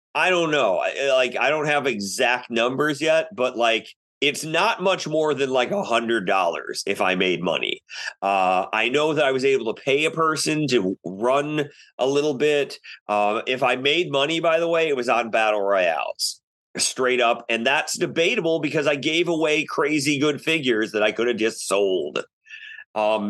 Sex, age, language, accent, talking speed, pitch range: male, 30-49, English, American, 190 wpm, 115-165 Hz